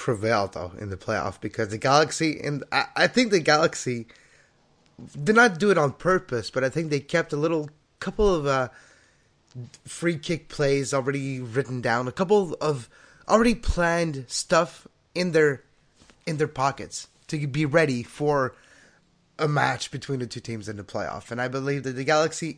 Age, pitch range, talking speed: 20-39, 125-175 Hz, 175 wpm